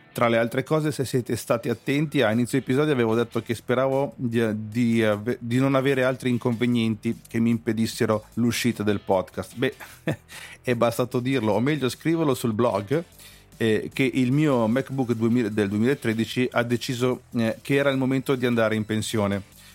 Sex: male